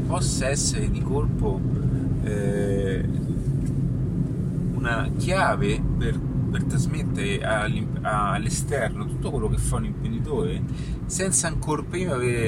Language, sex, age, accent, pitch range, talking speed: Italian, male, 30-49, native, 130-140 Hz, 100 wpm